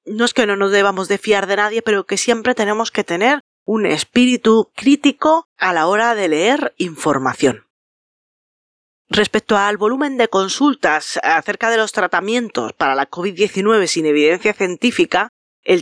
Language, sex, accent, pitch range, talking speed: Spanish, female, Spanish, 170-230 Hz, 155 wpm